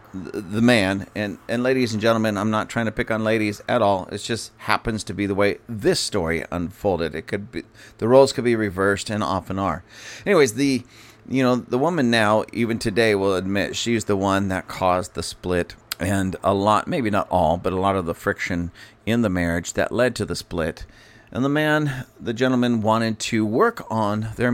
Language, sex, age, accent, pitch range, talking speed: English, male, 40-59, American, 100-120 Hz, 210 wpm